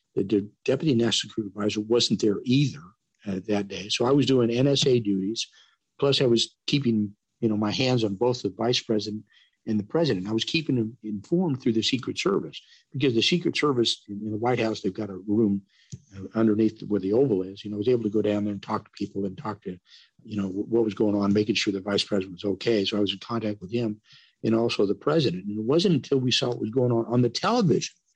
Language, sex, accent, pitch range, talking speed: English, male, American, 105-125 Hz, 250 wpm